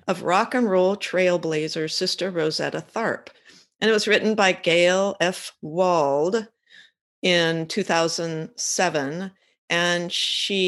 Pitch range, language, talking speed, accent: 155-175 Hz, English, 110 wpm, American